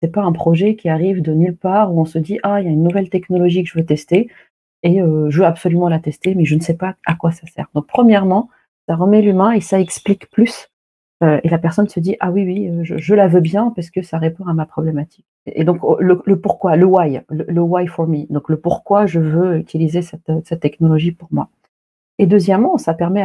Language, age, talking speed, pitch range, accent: French, 40-59, 265 wpm, 160-200 Hz, French